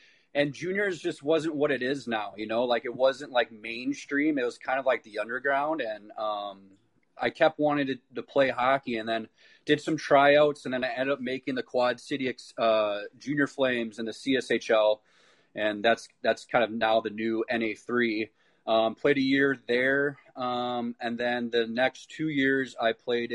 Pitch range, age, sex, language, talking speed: 115-135 Hz, 30-49, male, English, 190 wpm